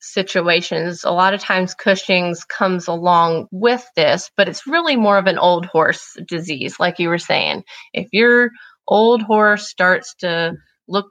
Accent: American